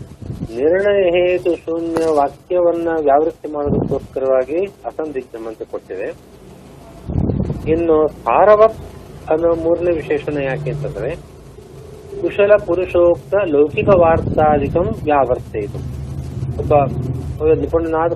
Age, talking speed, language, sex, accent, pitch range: 30-49, 75 wpm, Kannada, male, native, 135-170 Hz